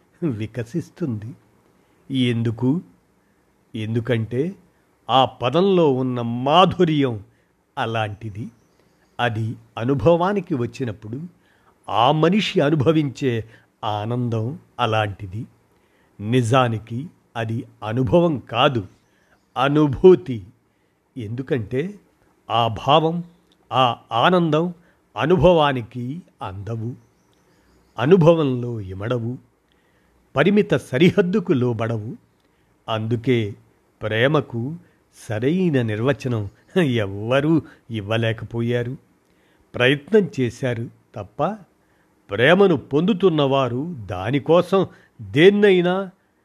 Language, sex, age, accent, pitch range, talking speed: Telugu, male, 50-69, native, 115-165 Hz, 60 wpm